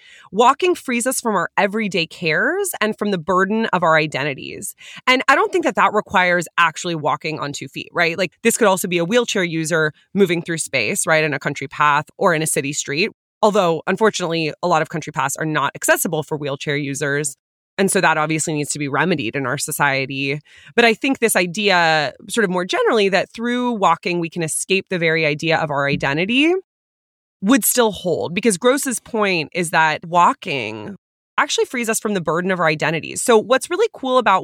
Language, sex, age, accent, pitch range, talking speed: English, female, 20-39, American, 155-215 Hz, 200 wpm